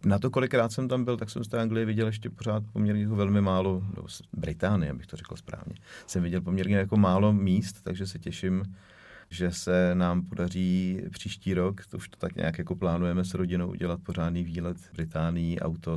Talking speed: 200 wpm